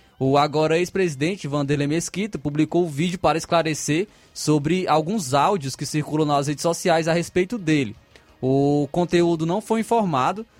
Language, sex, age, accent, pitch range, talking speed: Portuguese, male, 20-39, Brazilian, 155-190 Hz, 155 wpm